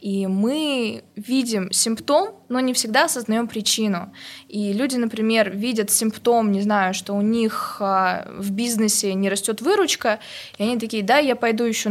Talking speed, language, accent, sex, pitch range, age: 155 wpm, Russian, native, female, 205-240 Hz, 20-39